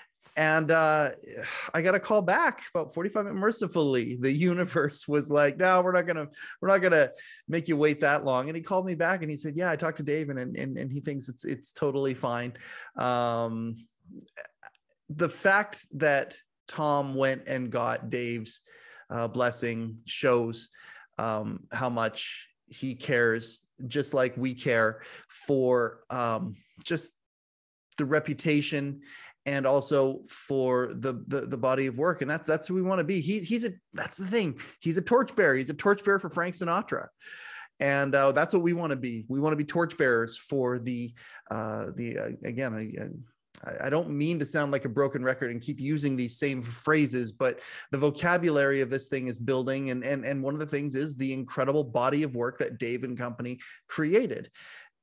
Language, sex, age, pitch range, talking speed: English, male, 30-49, 130-170 Hz, 185 wpm